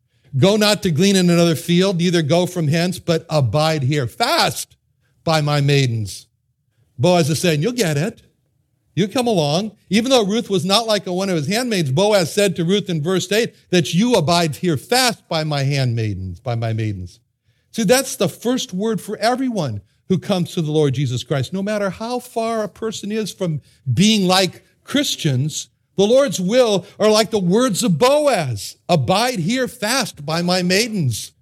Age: 60-79